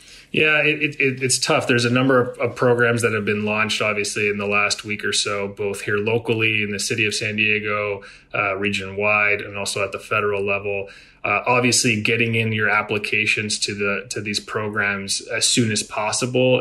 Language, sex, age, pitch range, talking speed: English, male, 30-49, 105-120 Hz, 195 wpm